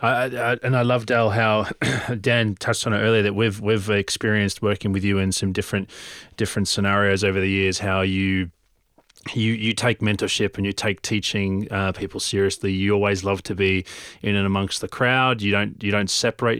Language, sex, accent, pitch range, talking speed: English, male, Australian, 100-115 Hz, 190 wpm